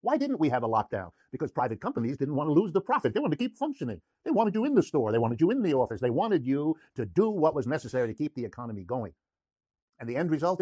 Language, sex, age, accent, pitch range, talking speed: English, male, 50-69, American, 120-160 Hz, 275 wpm